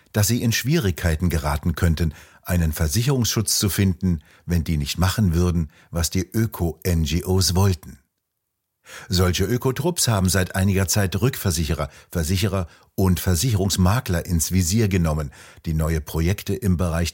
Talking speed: 130 wpm